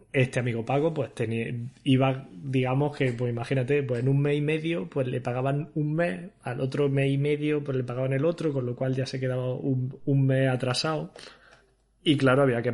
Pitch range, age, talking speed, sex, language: 120-140 Hz, 20-39, 210 wpm, male, Spanish